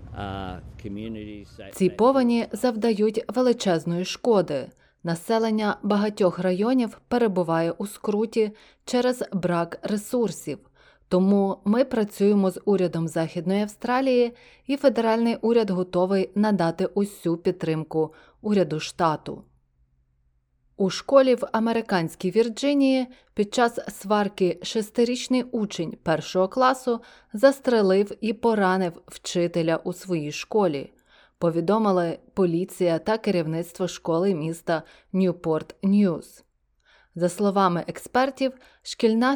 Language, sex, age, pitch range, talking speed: Ukrainian, female, 20-39, 170-230 Hz, 95 wpm